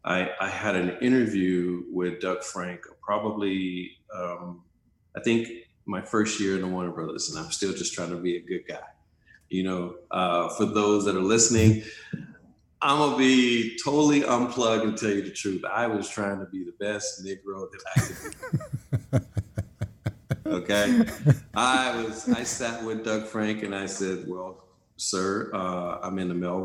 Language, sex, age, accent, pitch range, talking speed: English, male, 40-59, American, 90-120 Hz, 165 wpm